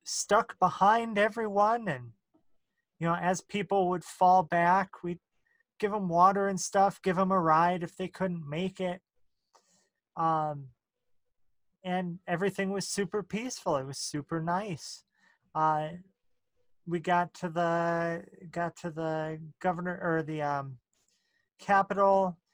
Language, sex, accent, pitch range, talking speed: English, male, American, 155-185 Hz, 130 wpm